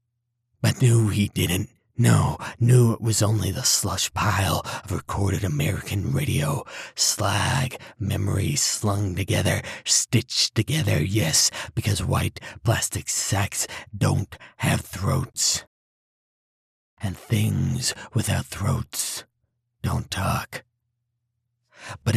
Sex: male